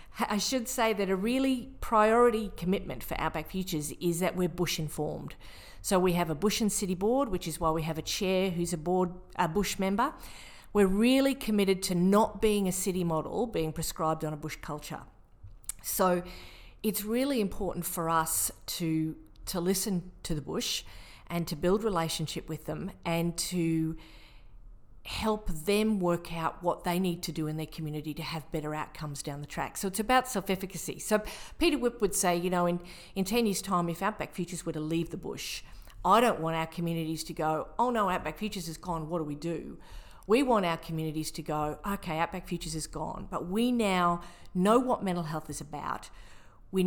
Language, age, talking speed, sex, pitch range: English, 40-59, 195 wpm, female, 160-205 Hz